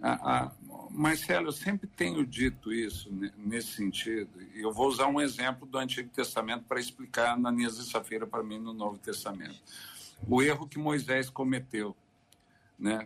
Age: 60-79